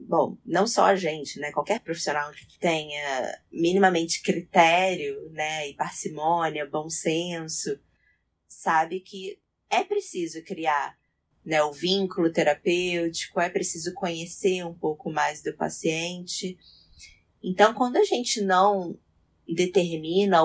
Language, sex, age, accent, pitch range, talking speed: Portuguese, female, 20-39, Brazilian, 160-195 Hz, 115 wpm